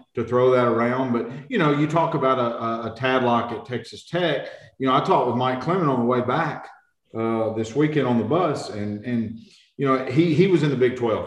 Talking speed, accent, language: 240 wpm, American, English